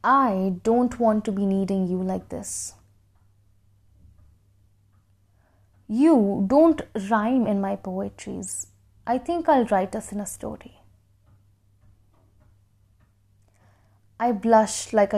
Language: Hindi